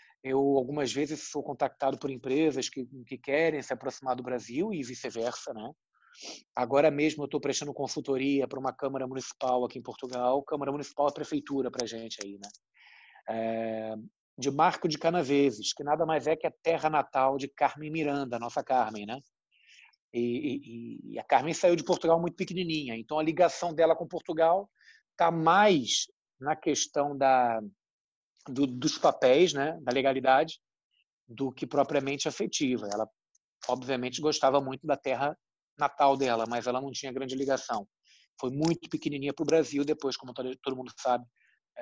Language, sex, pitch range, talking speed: Portuguese, male, 130-155 Hz, 160 wpm